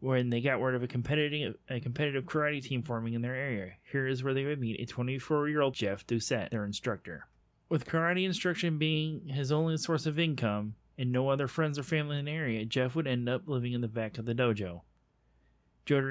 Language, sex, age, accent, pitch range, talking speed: English, male, 30-49, American, 115-140 Hz, 205 wpm